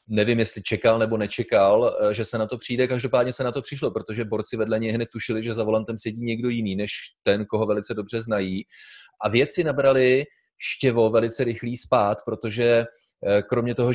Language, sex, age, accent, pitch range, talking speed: Czech, male, 30-49, native, 110-125 Hz, 185 wpm